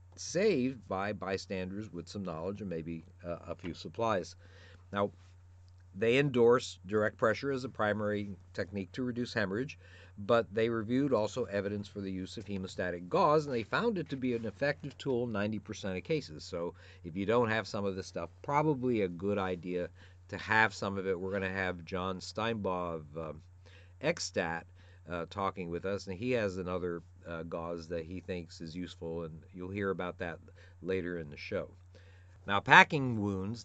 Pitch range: 90-110 Hz